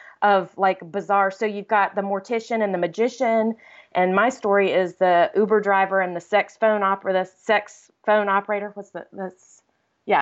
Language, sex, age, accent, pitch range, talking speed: English, female, 30-49, American, 180-220 Hz, 190 wpm